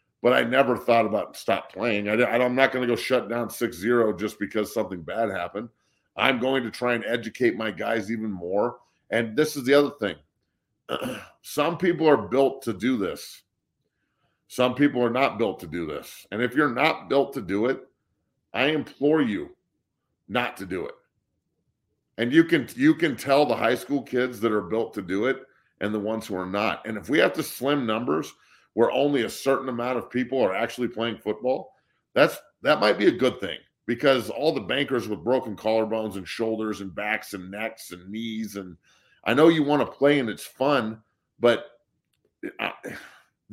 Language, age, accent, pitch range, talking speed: English, 50-69, American, 105-130 Hz, 190 wpm